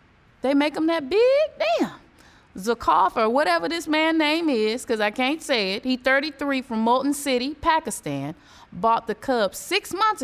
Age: 20-39